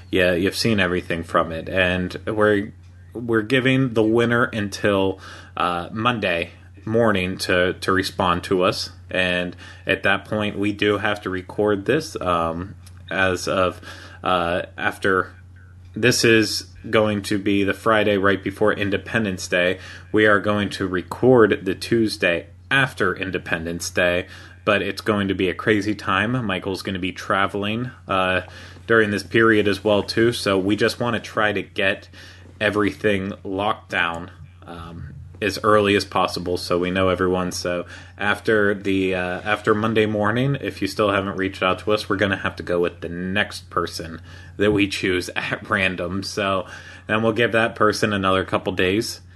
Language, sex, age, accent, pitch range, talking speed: English, male, 30-49, American, 90-105 Hz, 165 wpm